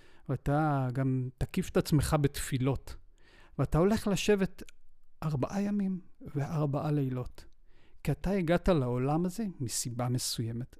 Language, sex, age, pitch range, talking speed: Hebrew, male, 40-59, 130-180 Hz, 110 wpm